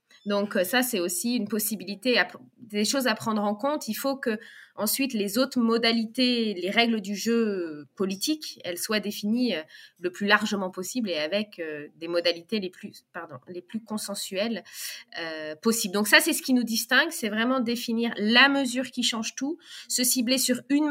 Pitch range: 200-255 Hz